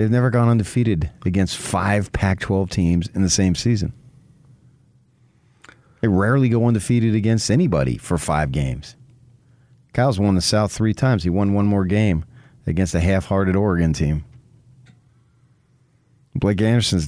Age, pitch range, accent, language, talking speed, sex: 40-59, 95-125 Hz, American, English, 135 wpm, male